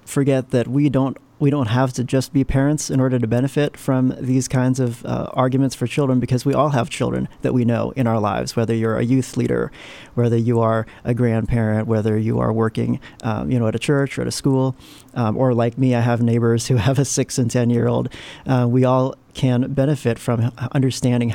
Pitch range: 115-135 Hz